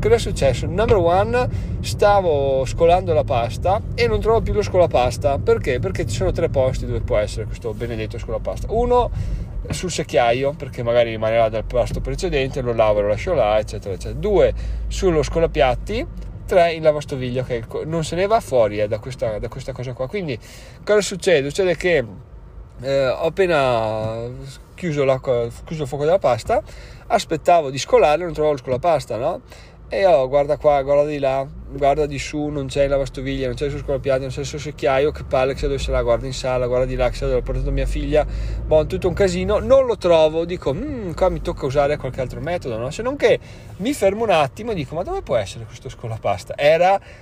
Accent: native